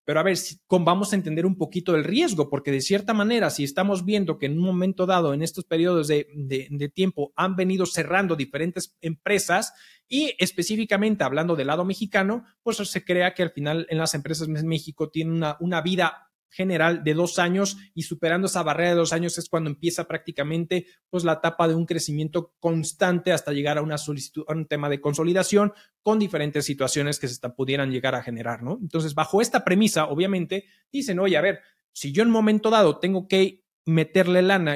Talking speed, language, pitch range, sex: 200 wpm, Spanish, 155-195 Hz, male